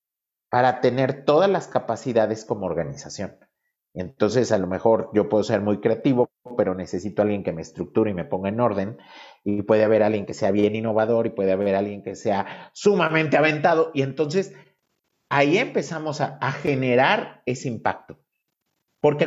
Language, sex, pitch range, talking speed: Spanish, male, 105-145 Hz, 165 wpm